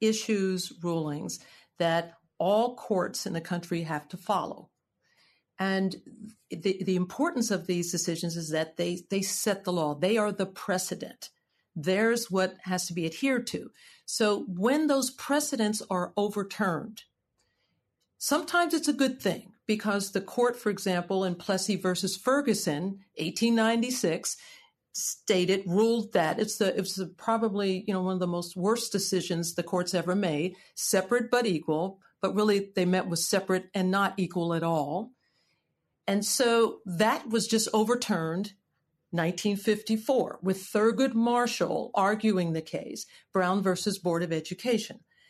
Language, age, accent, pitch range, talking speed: English, 50-69, American, 180-225 Hz, 145 wpm